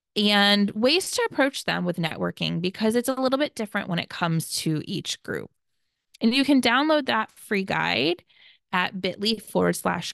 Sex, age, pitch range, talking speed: female, 20-39, 185-260 Hz, 180 wpm